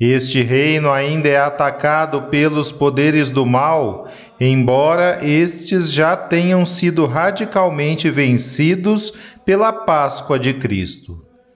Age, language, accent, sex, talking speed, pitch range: 40-59, Portuguese, Brazilian, male, 105 wpm, 135-175 Hz